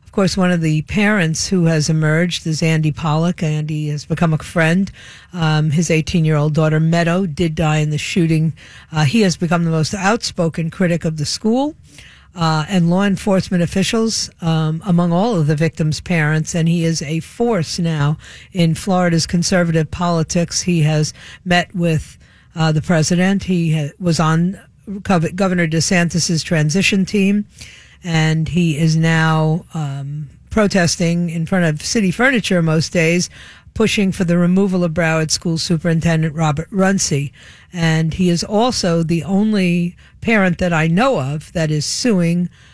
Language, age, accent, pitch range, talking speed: English, 50-69, American, 160-185 Hz, 160 wpm